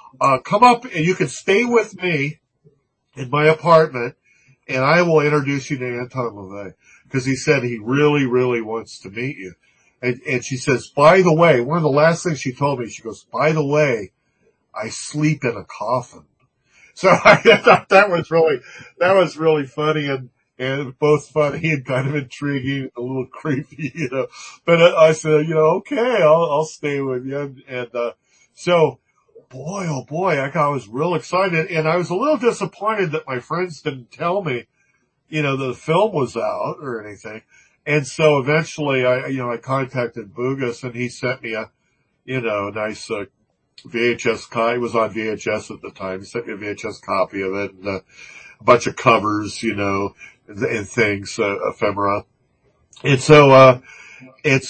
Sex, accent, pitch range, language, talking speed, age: male, American, 125-155 Hz, English, 190 wpm, 50-69